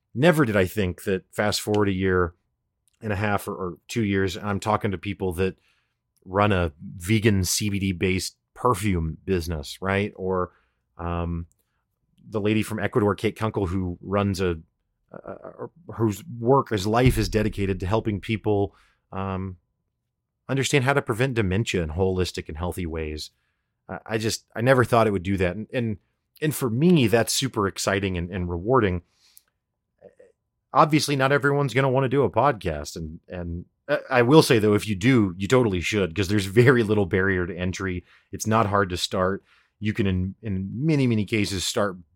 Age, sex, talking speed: 30-49, male, 175 wpm